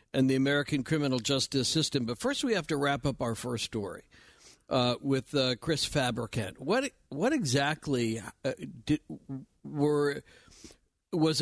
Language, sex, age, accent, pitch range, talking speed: English, male, 50-69, American, 120-155 Hz, 145 wpm